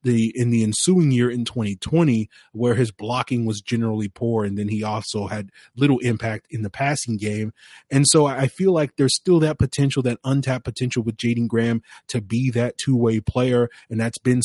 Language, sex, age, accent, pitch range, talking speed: English, male, 30-49, American, 110-125 Hz, 190 wpm